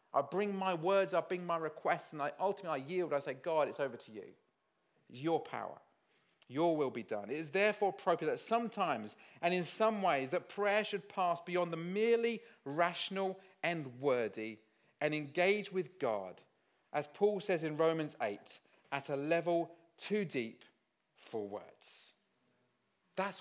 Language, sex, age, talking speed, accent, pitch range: English, male, 40-59, 165 wpm, British, 165-205 Hz